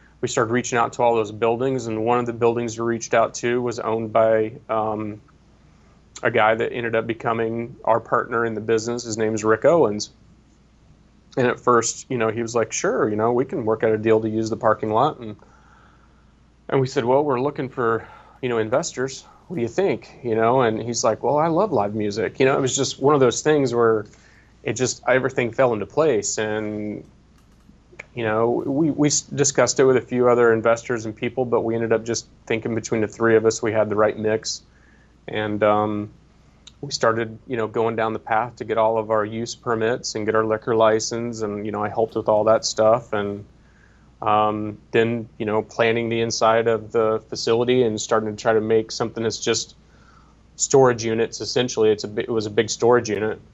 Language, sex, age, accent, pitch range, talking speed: English, male, 30-49, American, 110-120 Hz, 215 wpm